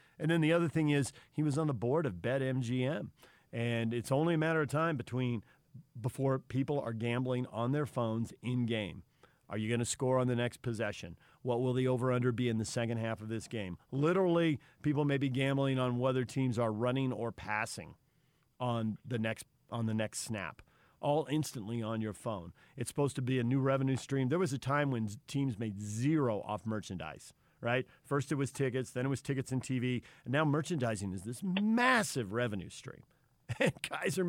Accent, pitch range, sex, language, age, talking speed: American, 115-145 Hz, male, English, 40-59, 200 wpm